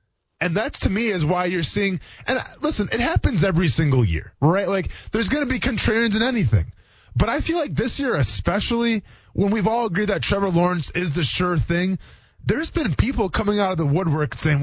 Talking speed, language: 210 wpm, English